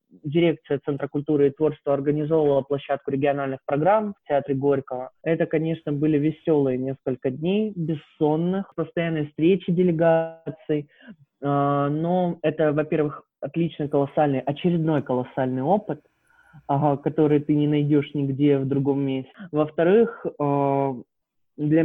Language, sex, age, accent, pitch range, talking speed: Russian, male, 20-39, native, 140-170 Hz, 110 wpm